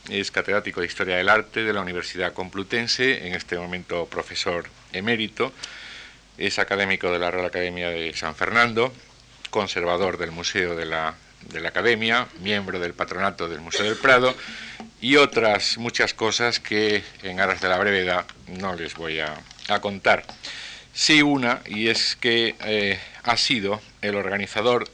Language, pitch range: Spanish, 90-105 Hz